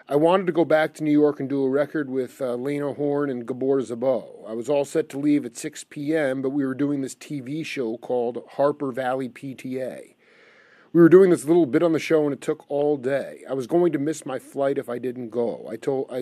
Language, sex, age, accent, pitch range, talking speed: English, male, 40-59, American, 130-160 Hz, 240 wpm